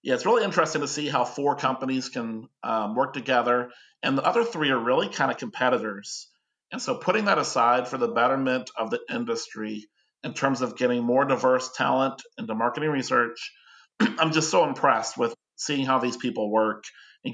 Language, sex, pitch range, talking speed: English, male, 115-140 Hz, 185 wpm